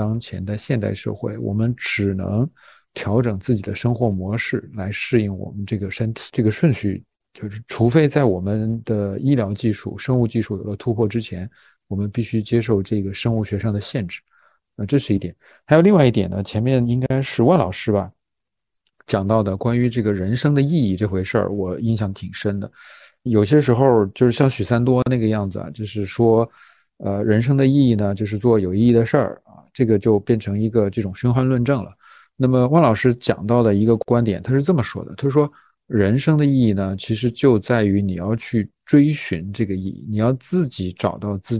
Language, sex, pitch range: Chinese, male, 100-125 Hz